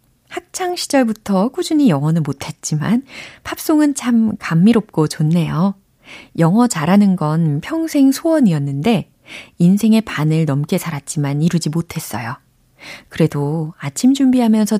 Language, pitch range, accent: Korean, 155-235 Hz, native